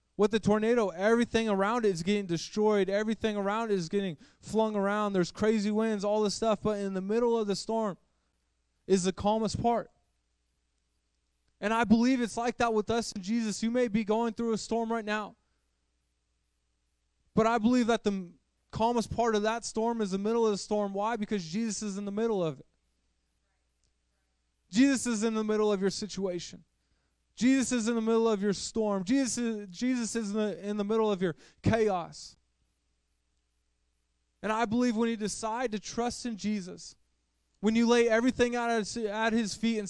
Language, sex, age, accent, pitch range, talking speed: English, male, 20-39, American, 165-225 Hz, 190 wpm